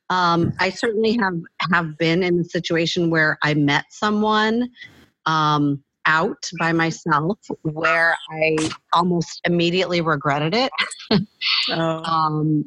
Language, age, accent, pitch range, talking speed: English, 40-59, American, 155-190 Hz, 115 wpm